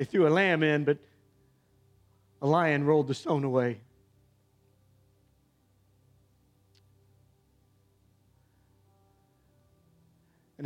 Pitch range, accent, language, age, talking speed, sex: 105-150 Hz, American, English, 50-69, 75 wpm, male